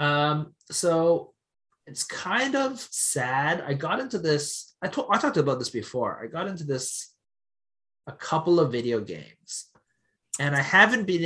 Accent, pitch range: American, 125-165 Hz